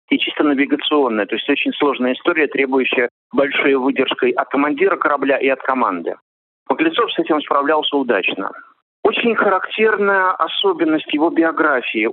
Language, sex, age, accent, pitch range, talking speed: Russian, male, 50-69, native, 140-210 Hz, 135 wpm